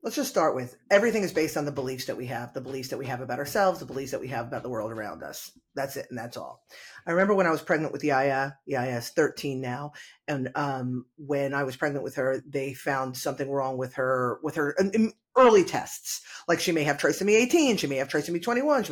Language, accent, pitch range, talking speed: English, American, 145-240 Hz, 245 wpm